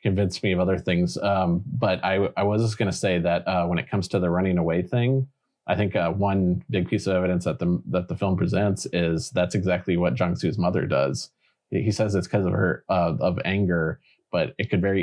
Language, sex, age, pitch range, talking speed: English, male, 30-49, 85-95 Hz, 230 wpm